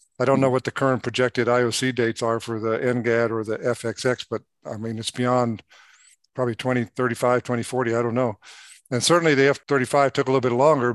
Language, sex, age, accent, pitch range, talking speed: English, male, 50-69, American, 115-135 Hz, 195 wpm